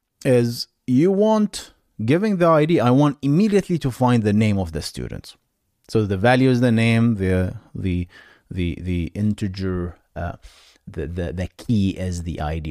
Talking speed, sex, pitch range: 165 wpm, male, 100-150 Hz